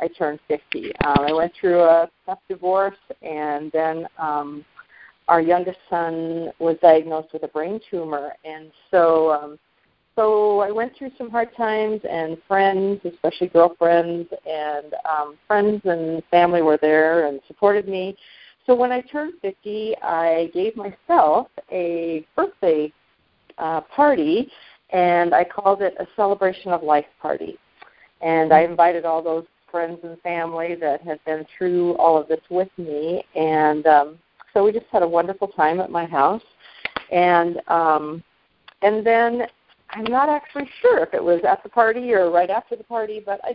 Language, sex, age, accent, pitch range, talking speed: English, female, 40-59, American, 160-205 Hz, 160 wpm